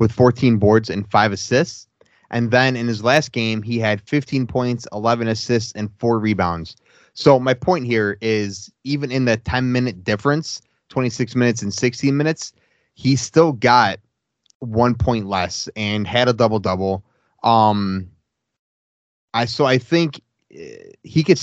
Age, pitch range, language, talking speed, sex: 20-39, 110-130 Hz, English, 155 wpm, male